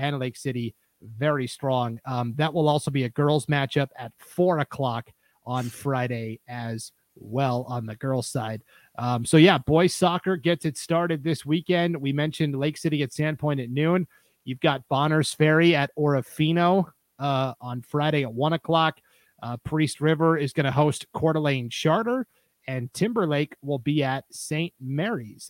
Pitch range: 125-155 Hz